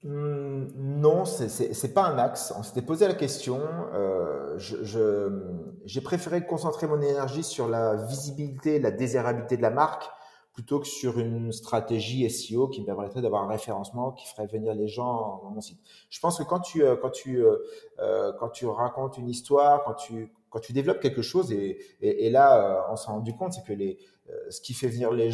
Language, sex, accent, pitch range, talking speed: French, male, French, 115-185 Hz, 205 wpm